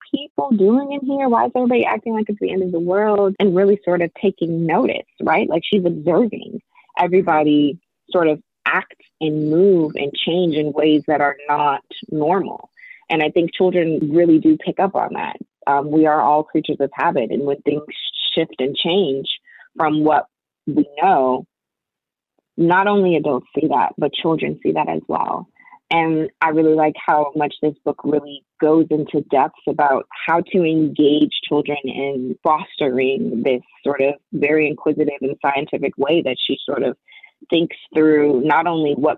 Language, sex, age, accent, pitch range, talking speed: English, female, 20-39, American, 145-175 Hz, 175 wpm